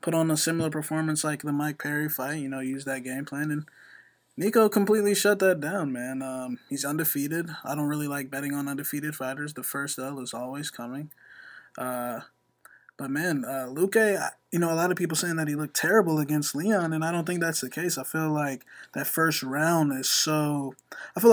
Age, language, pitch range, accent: 20-39, English, 135-165 Hz, American